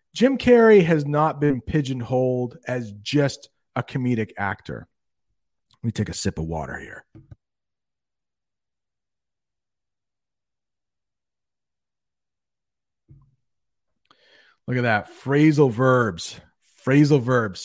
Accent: American